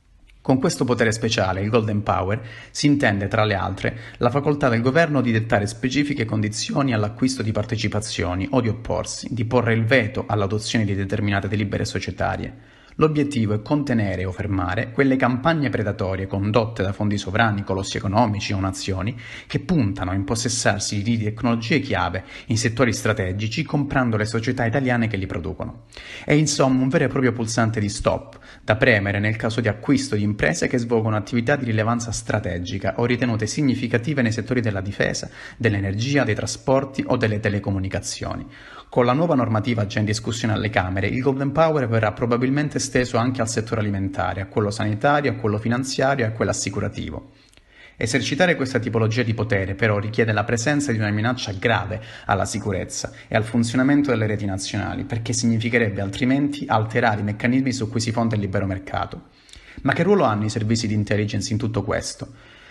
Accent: native